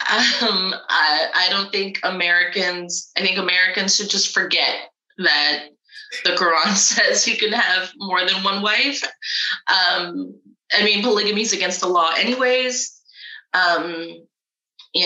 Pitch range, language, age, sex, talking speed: 170-235 Hz, English, 20-39, female, 135 wpm